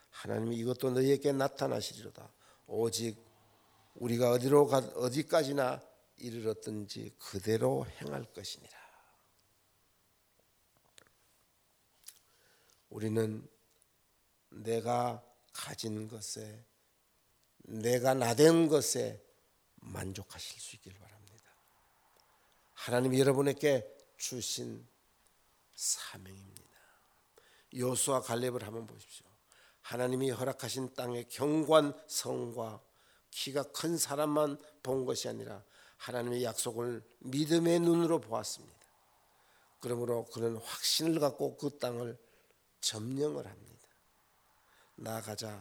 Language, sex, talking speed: English, male, 75 wpm